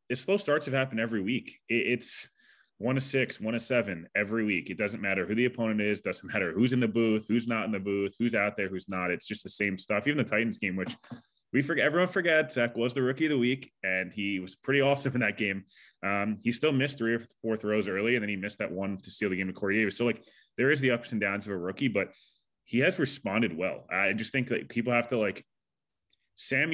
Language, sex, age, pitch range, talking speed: English, male, 20-39, 100-130 Hz, 255 wpm